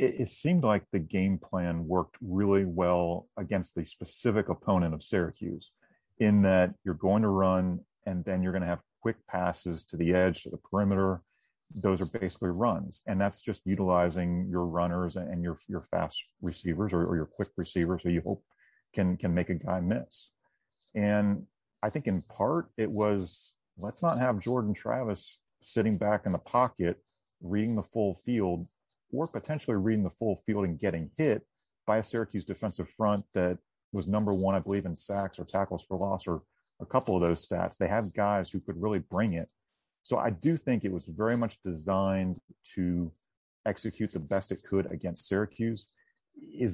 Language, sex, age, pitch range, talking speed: English, male, 40-59, 90-110 Hz, 185 wpm